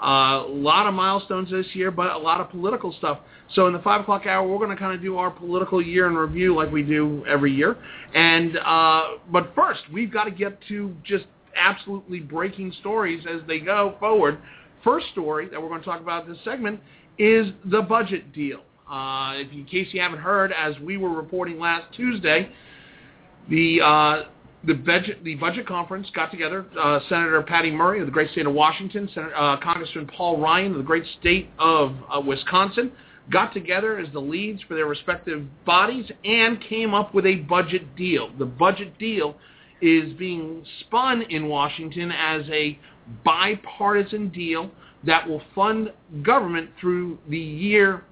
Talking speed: 180 wpm